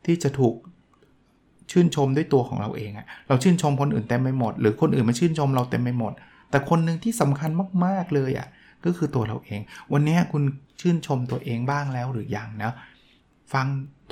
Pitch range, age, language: 120-150 Hz, 20-39, Thai